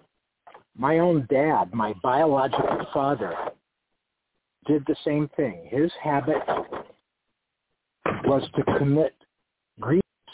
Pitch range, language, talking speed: 125-160 Hz, English, 100 wpm